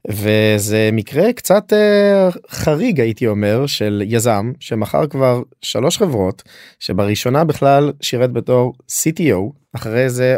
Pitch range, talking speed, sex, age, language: 105-135 Hz, 110 wpm, male, 20-39, Hebrew